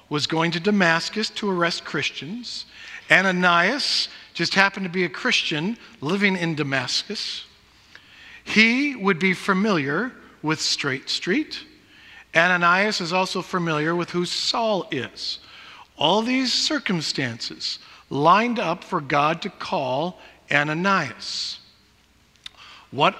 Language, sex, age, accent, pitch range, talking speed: English, male, 50-69, American, 155-225 Hz, 110 wpm